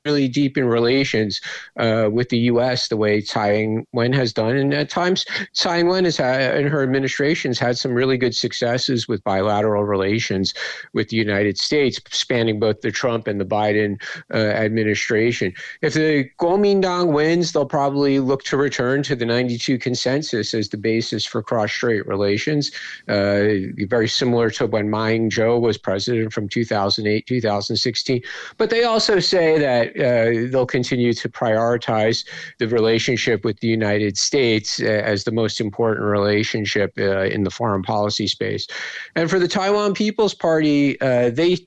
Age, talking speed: 50-69, 160 wpm